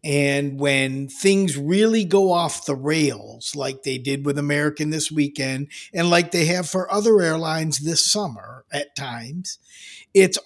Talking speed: 155 wpm